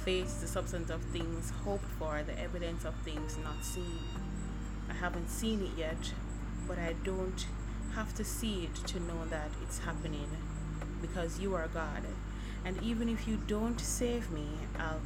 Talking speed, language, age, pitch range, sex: 165 wpm, English, 30-49, 95-150 Hz, female